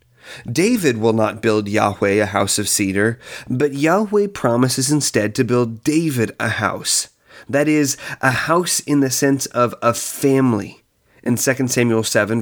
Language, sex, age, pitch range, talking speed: English, male, 30-49, 110-140 Hz, 155 wpm